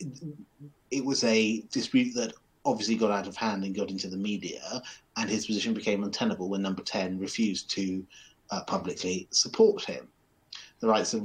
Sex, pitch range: male, 95-110 Hz